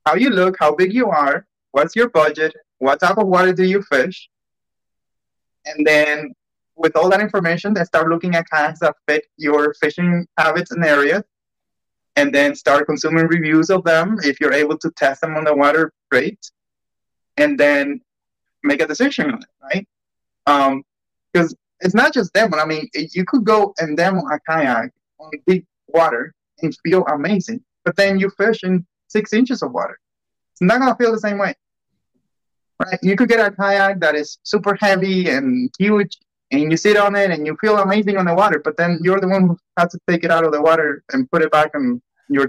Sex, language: male, English